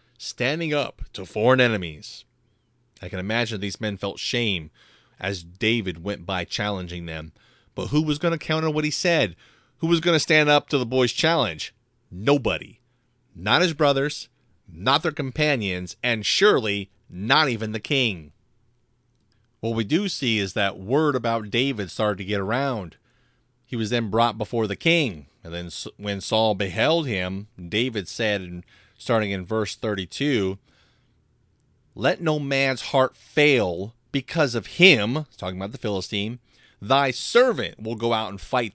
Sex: male